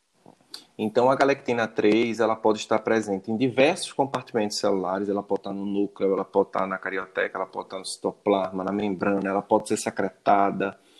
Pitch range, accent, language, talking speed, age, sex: 100-120 Hz, Brazilian, Portuguese, 180 wpm, 20-39, male